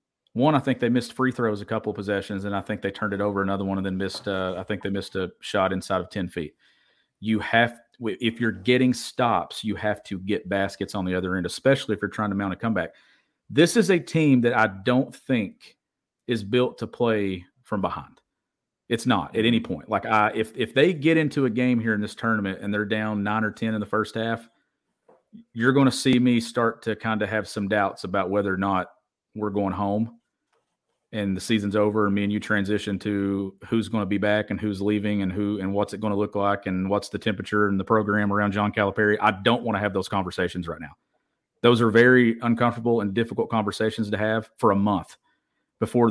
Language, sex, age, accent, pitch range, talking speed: English, male, 40-59, American, 100-120 Hz, 230 wpm